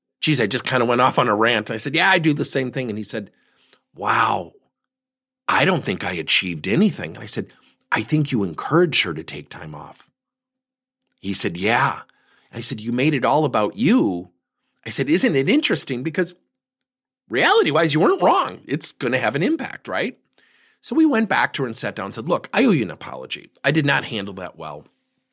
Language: English